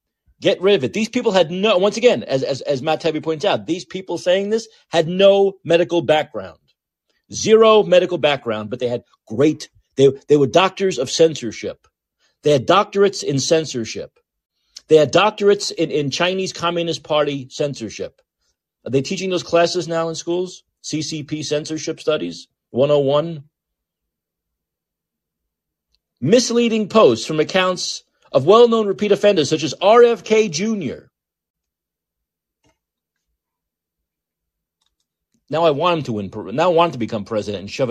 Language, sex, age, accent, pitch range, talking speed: English, male, 40-59, American, 120-180 Hz, 140 wpm